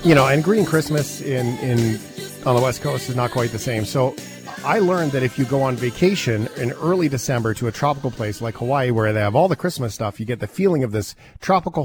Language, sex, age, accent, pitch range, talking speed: English, male, 40-59, American, 110-155 Hz, 245 wpm